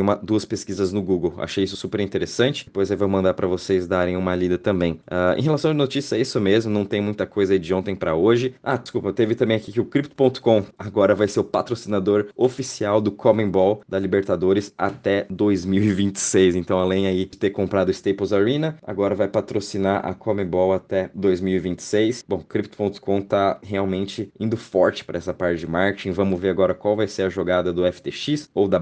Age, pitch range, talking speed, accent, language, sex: 20-39, 95-105 Hz, 200 wpm, Brazilian, Portuguese, male